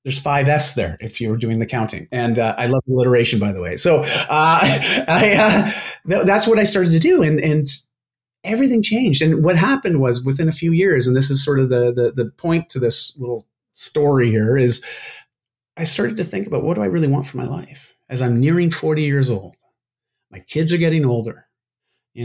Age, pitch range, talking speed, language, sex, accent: 30-49, 125-165 Hz, 215 wpm, English, male, American